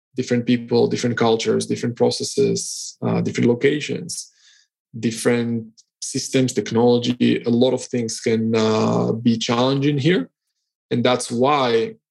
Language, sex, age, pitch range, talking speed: English, male, 20-39, 115-145 Hz, 120 wpm